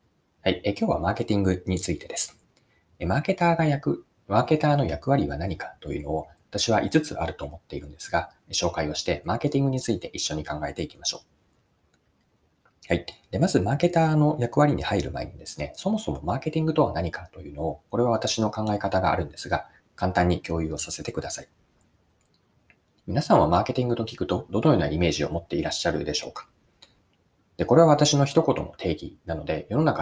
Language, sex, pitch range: Japanese, male, 85-135 Hz